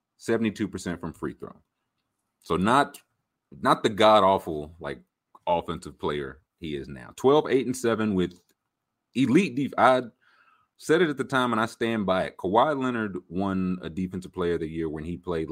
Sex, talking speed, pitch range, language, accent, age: male, 180 wpm, 85-125 Hz, English, American, 30-49